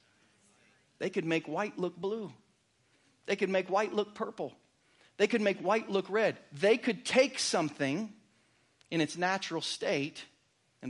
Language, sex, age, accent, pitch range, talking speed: English, male, 40-59, American, 135-185 Hz, 150 wpm